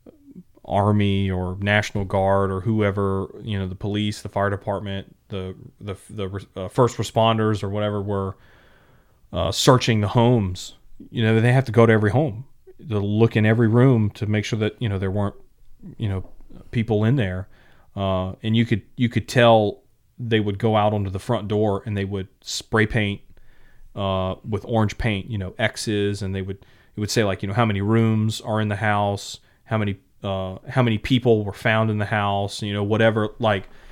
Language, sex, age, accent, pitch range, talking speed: English, male, 30-49, American, 100-115 Hz, 195 wpm